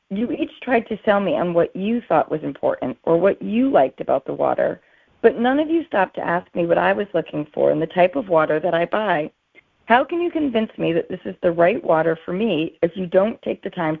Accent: American